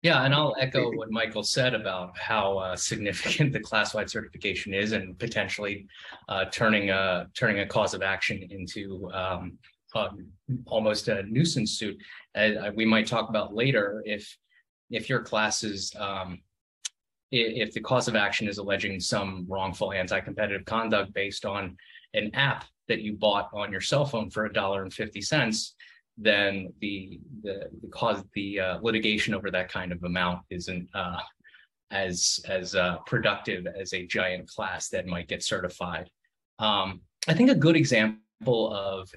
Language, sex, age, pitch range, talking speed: English, male, 20-39, 95-115 Hz, 160 wpm